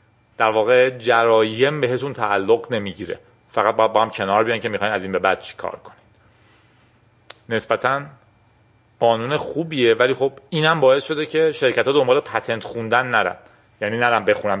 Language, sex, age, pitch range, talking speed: Persian, male, 40-59, 110-145 Hz, 160 wpm